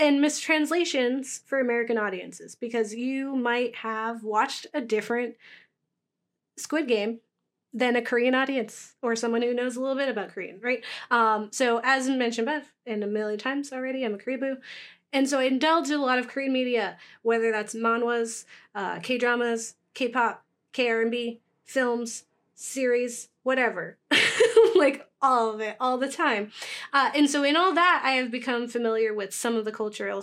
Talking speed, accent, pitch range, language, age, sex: 165 wpm, American, 220-260 Hz, English, 30-49, female